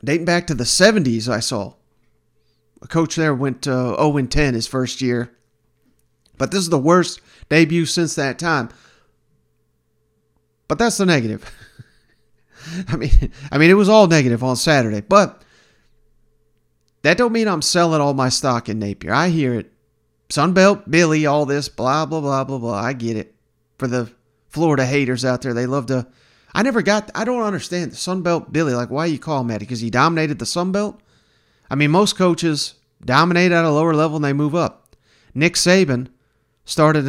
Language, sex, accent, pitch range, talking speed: English, male, American, 125-165 Hz, 175 wpm